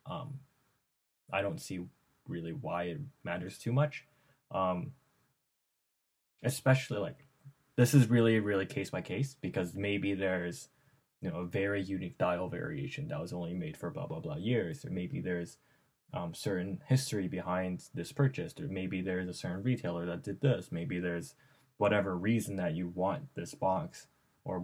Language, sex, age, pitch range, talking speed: English, male, 10-29, 95-140 Hz, 165 wpm